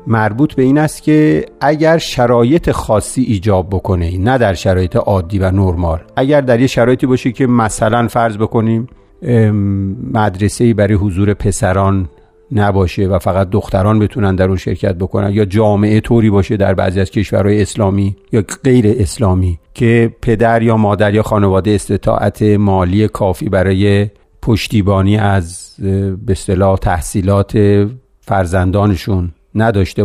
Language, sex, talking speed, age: Persian, male, 130 wpm, 50-69